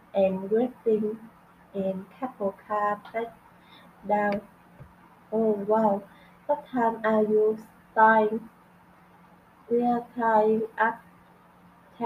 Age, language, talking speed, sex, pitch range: 20-39, Vietnamese, 80 wpm, female, 215-235 Hz